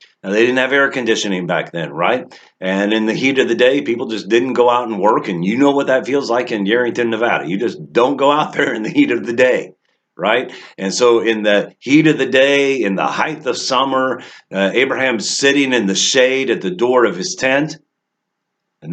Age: 50-69